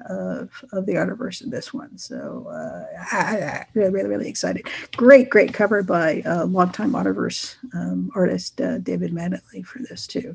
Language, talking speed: English, 175 wpm